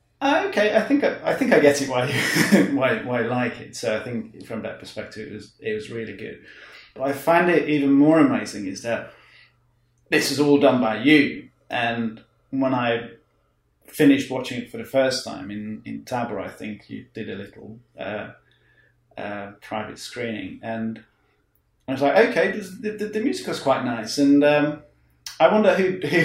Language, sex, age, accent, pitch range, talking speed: English, male, 30-49, British, 120-150 Hz, 190 wpm